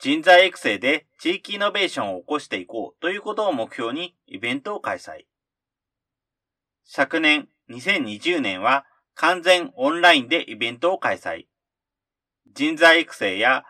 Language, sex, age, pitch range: Japanese, male, 40-59, 140-210 Hz